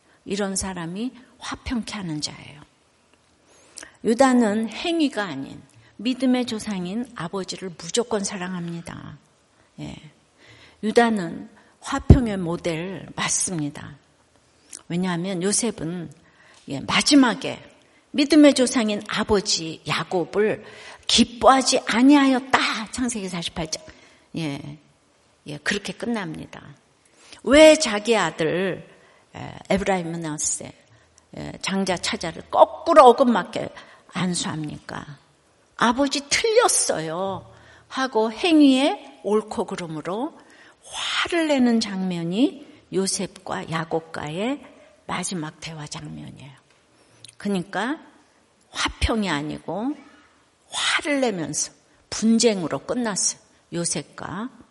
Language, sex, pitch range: Korean, female, 170-255 Hz